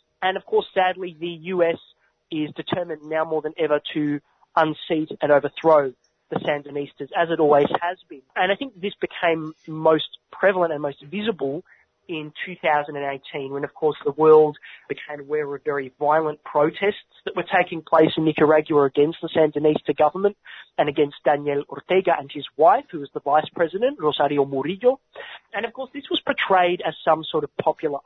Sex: male